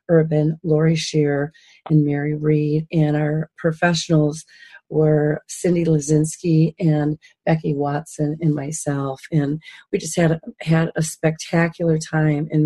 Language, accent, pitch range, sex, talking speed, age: English, American, 150-165 Hz, female, 125 wpm, 40-59